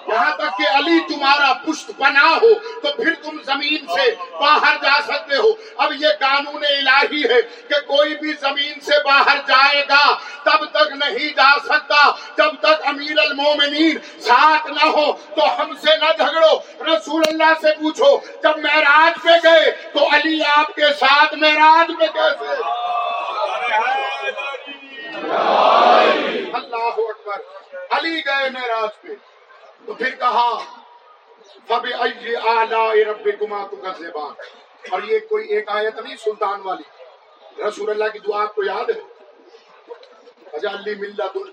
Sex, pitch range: male, 225-320 Hz